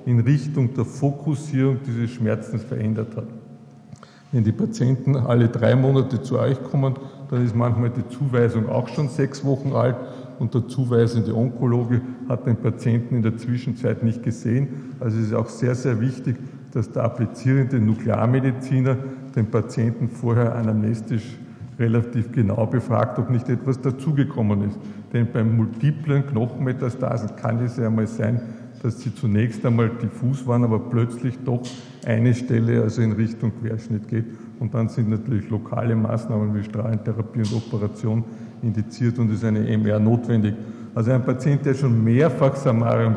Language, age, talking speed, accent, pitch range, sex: German, 50-69, 150 wpm, Austrian, 115-130 Hz, male